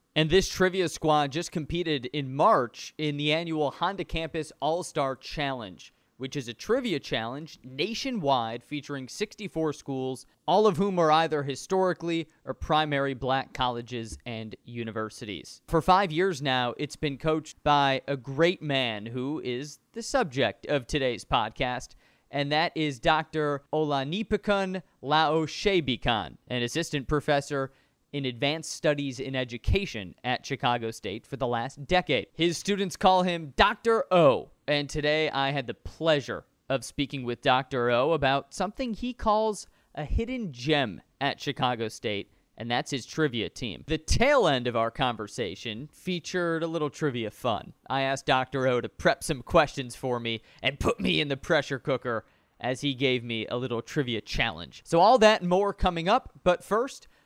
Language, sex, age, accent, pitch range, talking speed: English, male, 30-49, American, 130-165 Hz, 160 wpm